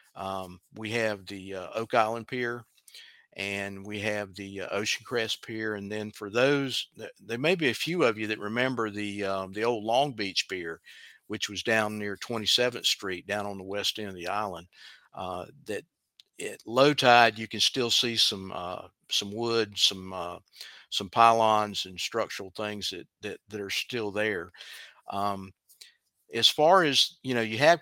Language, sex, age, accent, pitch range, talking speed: English, male, 50-69, American, 100-115 Hz, 185 wpm